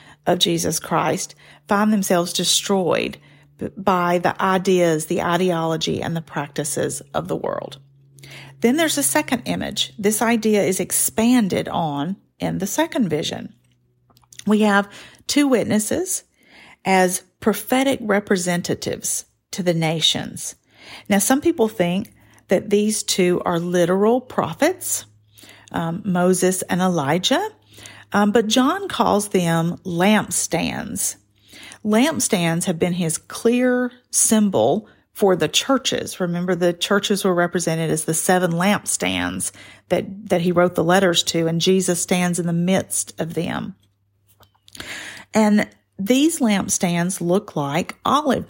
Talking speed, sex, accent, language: 125 wpm, female, American, English